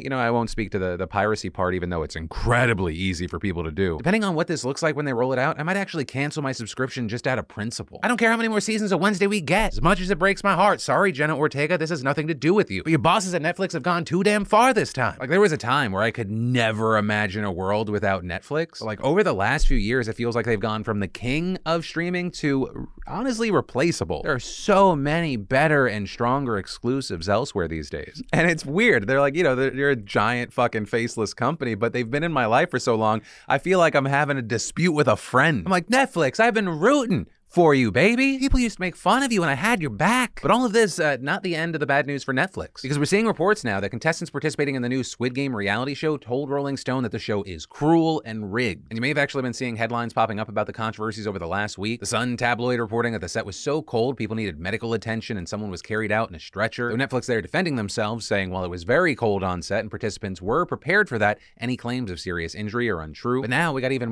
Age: 30-49